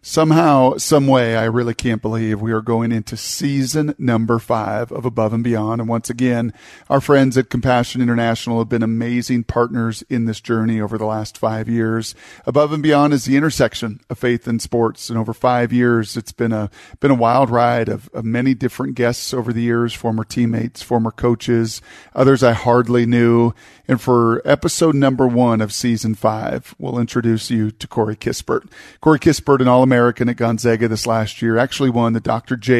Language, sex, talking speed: English, male, 190 wpm